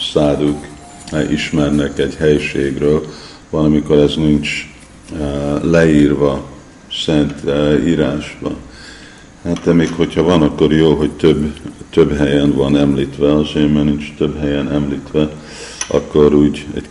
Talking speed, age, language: 115 wpm, 50-69, Hungarian